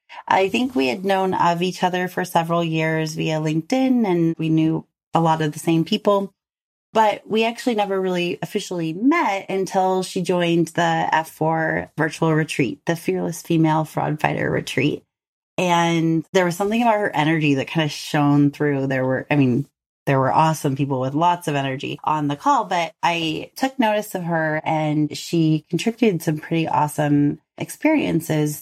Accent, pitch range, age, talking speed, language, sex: American, 155-185 Hz, 30-49, 170 wpm, English, female